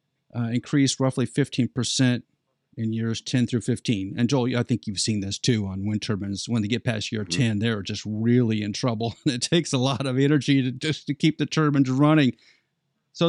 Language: English